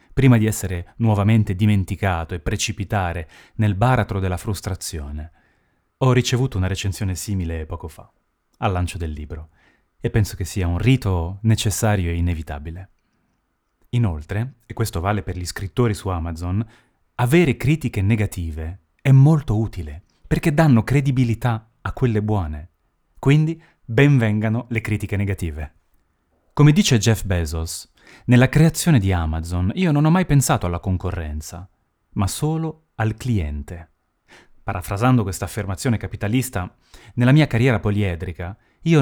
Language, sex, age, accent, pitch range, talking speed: Italian, male, 30-49, native, 85-120 Hz, 130 wpm